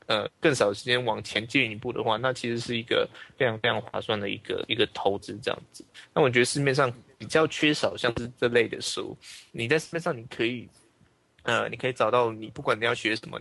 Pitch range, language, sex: 115-130 Hz, Chinese, male